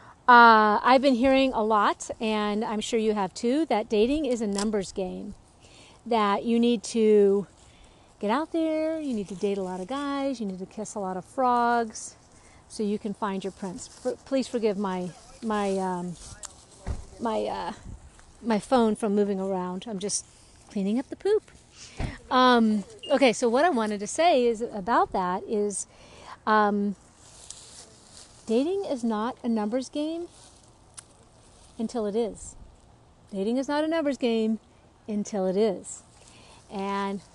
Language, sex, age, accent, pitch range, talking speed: English, female, 50-69, American, 205-260 Hz, 155 wpm